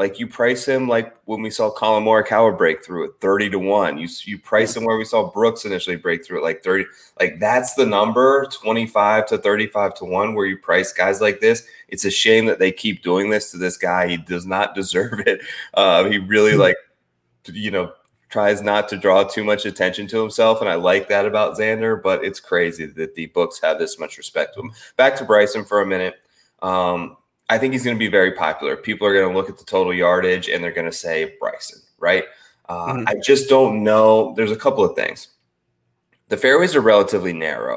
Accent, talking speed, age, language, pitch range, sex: American, 220 wpm, 20-39, English, 90-110 Hz, male